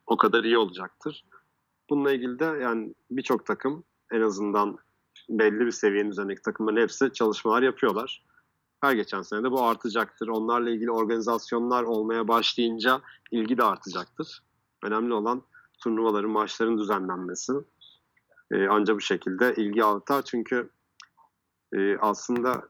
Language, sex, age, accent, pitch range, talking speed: Turkish, male, 40-59, native, 100-115 Hz, 125 wpm